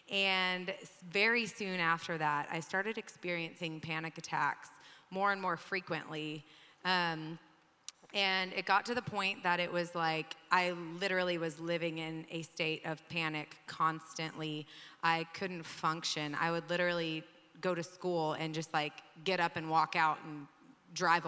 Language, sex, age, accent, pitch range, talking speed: English, female, 20-39, American, 160-185 Hz, 150 wpm